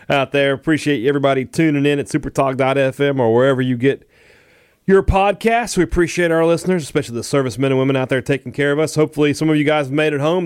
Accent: American